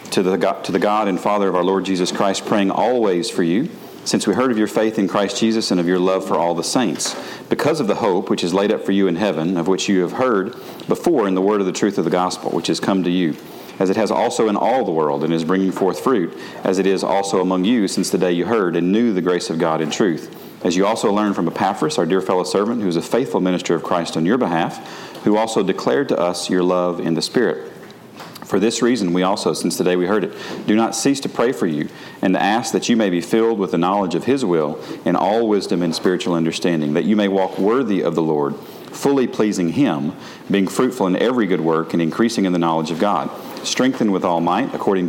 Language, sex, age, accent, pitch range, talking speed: English, male, 40-59, American, 85-105 Hz, 255 wpm